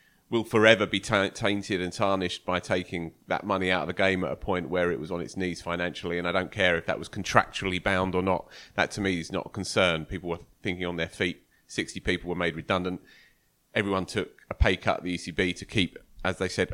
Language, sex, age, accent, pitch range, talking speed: English, male, 30-49, British, 95-130 Hz, 235 wpm